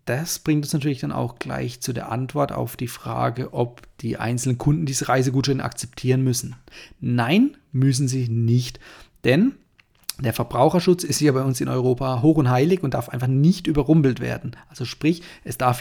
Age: 30-49